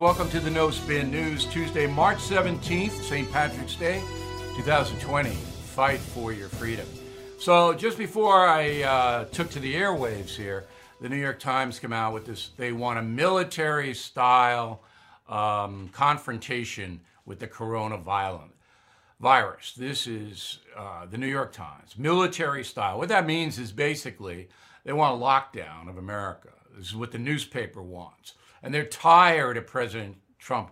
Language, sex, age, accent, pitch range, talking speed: English, male, 60-79, American, 105-155 Hz, 145 wpm